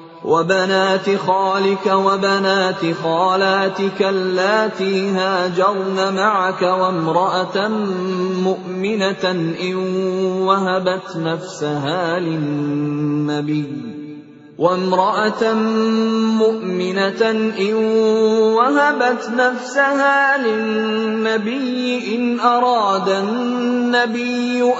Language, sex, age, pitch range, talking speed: English, male, 20-39, 185-245 Hz, 50 wpm